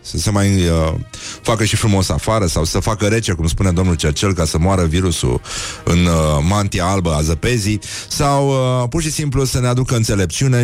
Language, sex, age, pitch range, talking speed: Romanian, male, 30-49, 90-120 Hz, 195 wpm